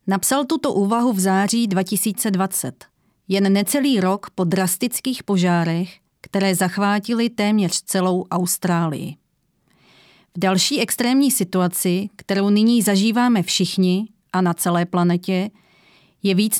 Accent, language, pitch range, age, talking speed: native, Czech, 185-220 Hz, 30-49, 110 wpm